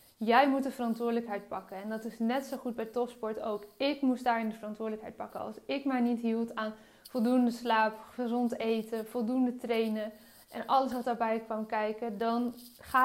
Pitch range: 220-255 Hz